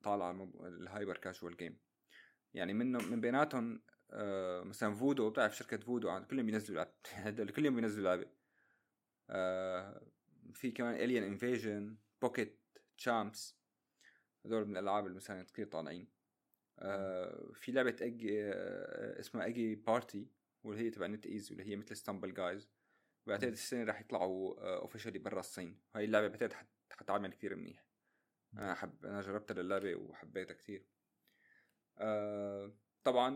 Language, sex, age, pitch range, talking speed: Arabic, male, 30-49, 100-120 Hz, 135 wpm